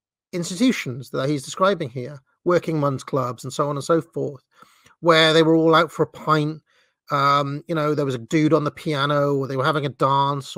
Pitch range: 130-160 Hz